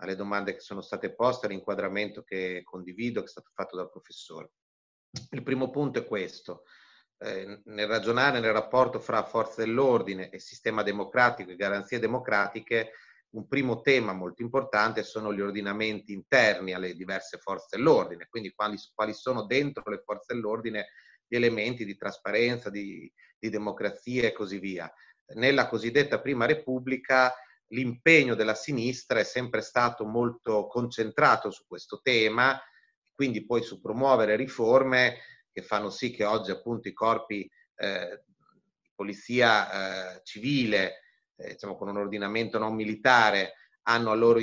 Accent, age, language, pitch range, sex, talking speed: native, 30-49, Italian, 105-130 Hz, male, 145 wpm